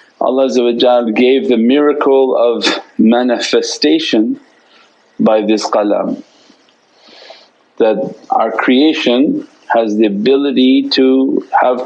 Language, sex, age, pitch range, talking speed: English, male, 50-69, 120-155 Hz, 85 wpm